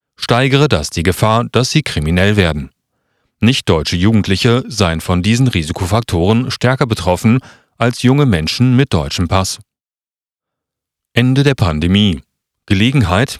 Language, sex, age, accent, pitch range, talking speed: German, male, 40-59, German, 90-125 Hz, 115 wpm